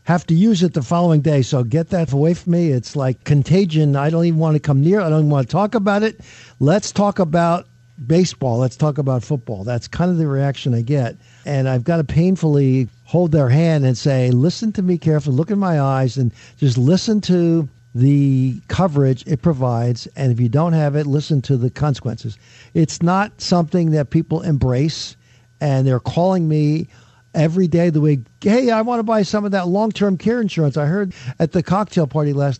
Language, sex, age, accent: English, male, 50-69, American